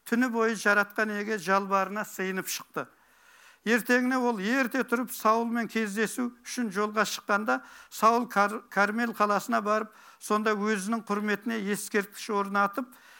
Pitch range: 205-235 Hz